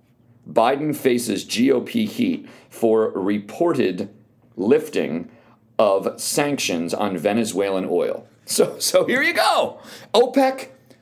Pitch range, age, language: 120-190 Hz, 40-59, English